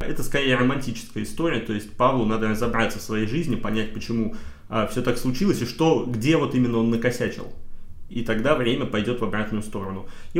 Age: 30-49